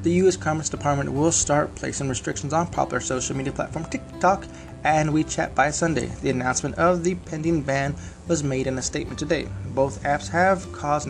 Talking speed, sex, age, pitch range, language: 185 wpm, male, 20-39, 125-150 Hz, English